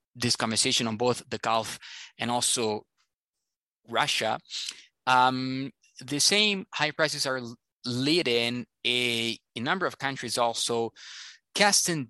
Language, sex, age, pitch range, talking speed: English, male, 20-39, 115-140 Hz, 115 wpm